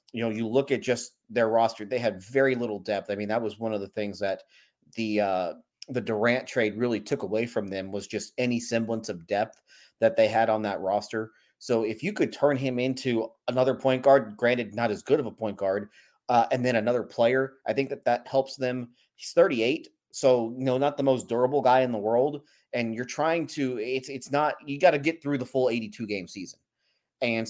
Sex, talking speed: male, 225 wpm